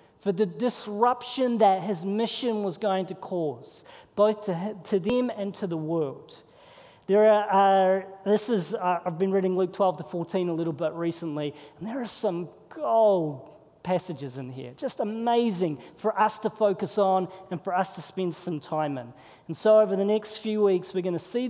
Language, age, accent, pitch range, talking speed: English, 40-59, Australian, 185-240 Hz, 195 wpm